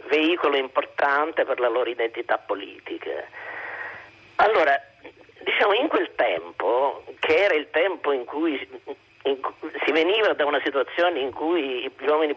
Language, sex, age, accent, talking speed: Italian, male, 50-69, native, 130 wpm